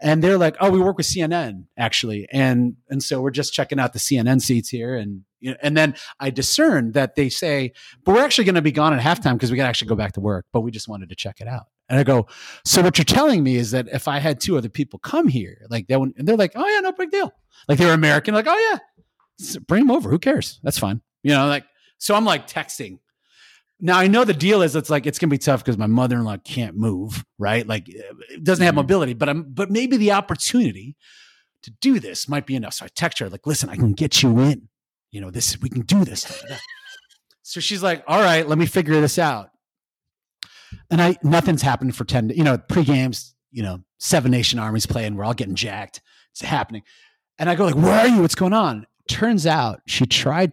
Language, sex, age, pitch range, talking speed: English, male, 30-49, 120-175 Hz, 240 wpm